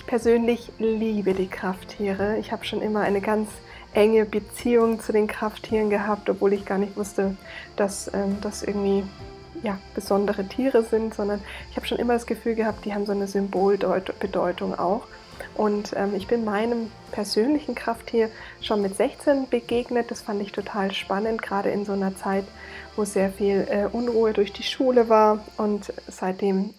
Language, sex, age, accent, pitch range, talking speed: German, female, 20-39, German, 200-225 Hz, 165 wpm